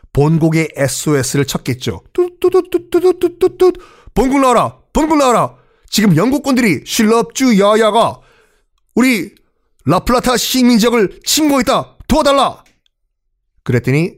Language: Korean